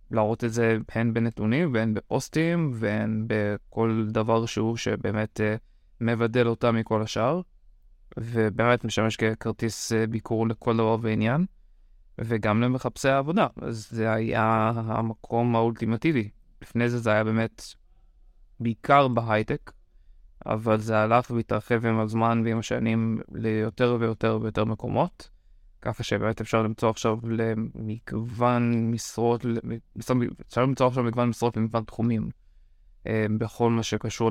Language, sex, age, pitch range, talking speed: Hebrew, male, 20-39, 110-120 Hz, 120 wpm